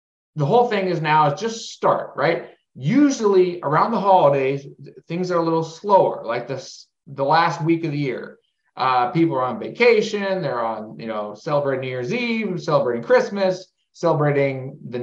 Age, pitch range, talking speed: 30-49, 145-200 Hz, 165 wpm